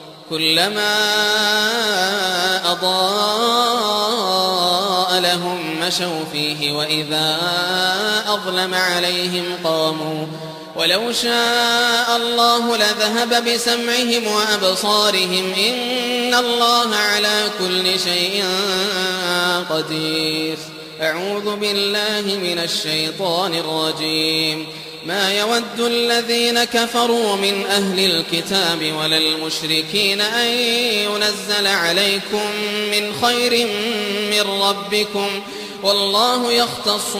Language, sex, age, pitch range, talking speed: English, male, 20-39, 165-210 Hz, 70 wpm